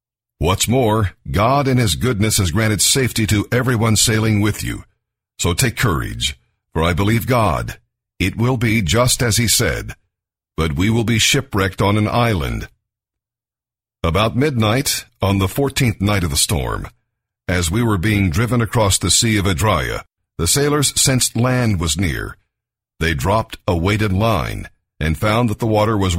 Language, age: English, 50-69